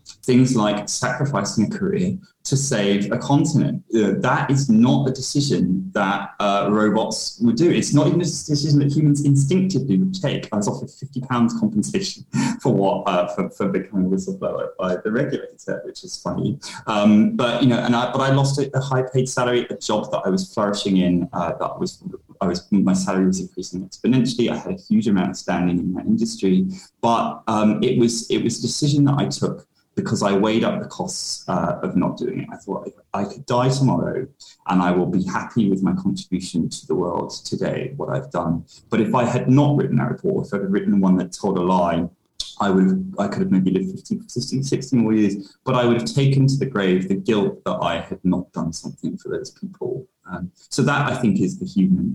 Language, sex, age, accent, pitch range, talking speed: English, male, 20-39, British, 95-140 Hz, 220 wpm